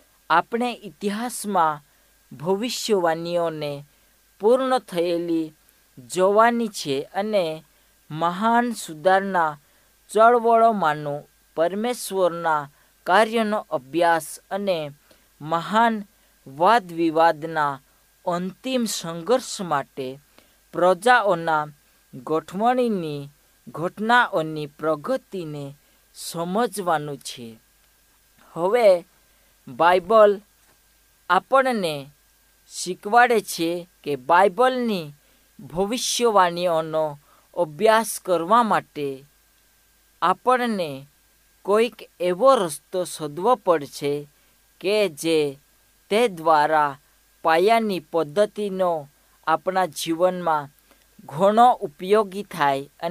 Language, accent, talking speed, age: Hindi, native, 55 wpm, 50-69